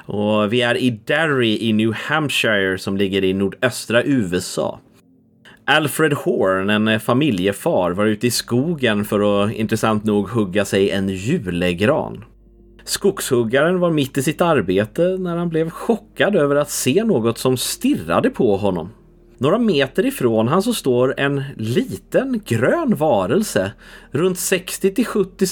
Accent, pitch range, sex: native, 110-175 Hz, male